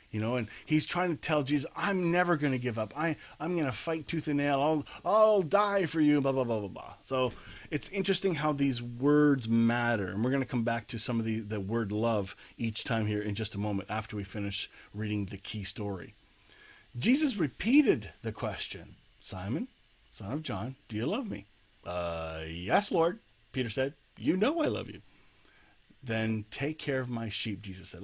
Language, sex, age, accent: English, male, 30-49, American